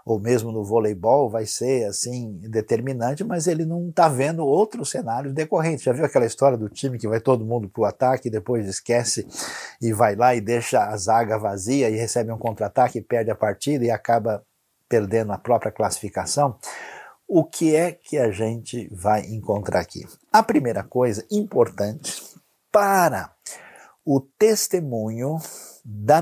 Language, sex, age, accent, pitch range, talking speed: Portuguese, male, 50-69, Brazilian, 110-145 Hz, 160 wpm